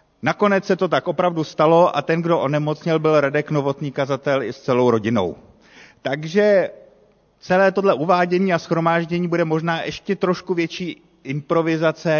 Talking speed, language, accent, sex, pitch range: 150 wpm, Czech, native, male, 130-170 Hz